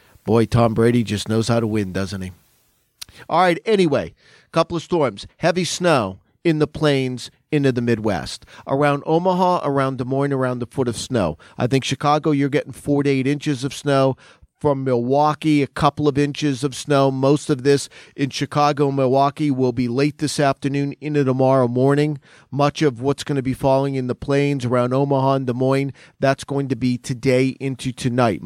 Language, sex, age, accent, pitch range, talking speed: English, male, 40-59, American, 130-155 Hz, 190 wpm